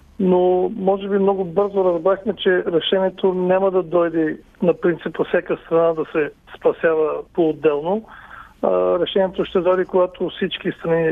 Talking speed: 135 wpm